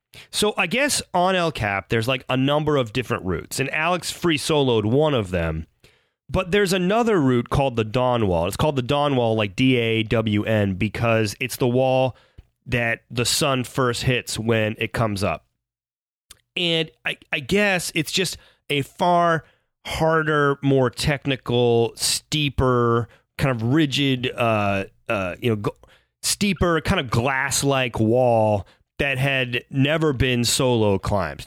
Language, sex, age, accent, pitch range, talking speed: English, male, 30-49, American, 110-145 Hz, 155 wpm